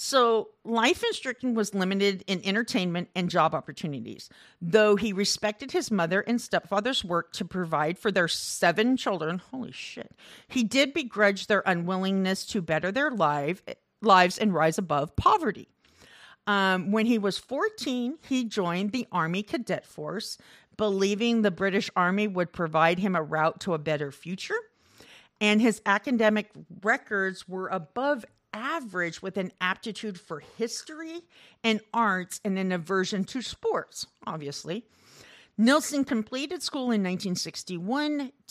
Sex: female